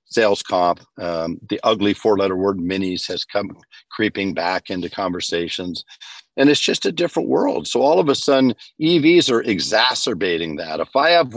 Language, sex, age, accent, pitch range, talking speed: English, male, 50-69, American, 100-140 Hz, 175 wpm